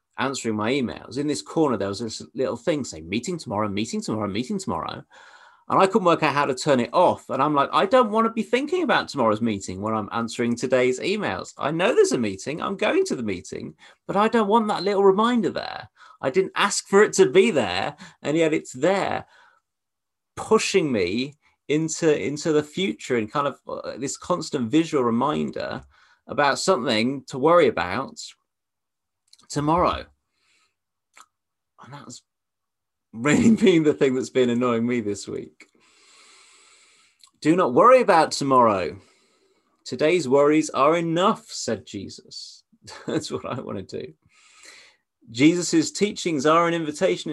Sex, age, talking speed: male, 30-49, 160 wpm